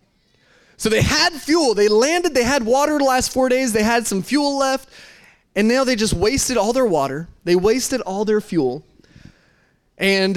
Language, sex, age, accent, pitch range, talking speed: English, male, 20-39, American, 160-215 Hz, 185 wpm